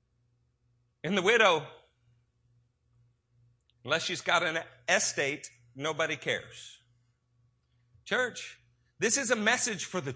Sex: male